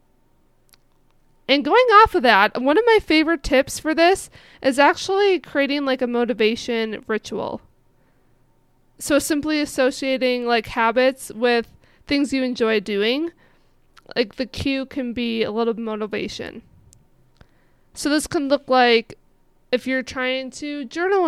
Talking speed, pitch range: 135 wpm, 230-275 Hz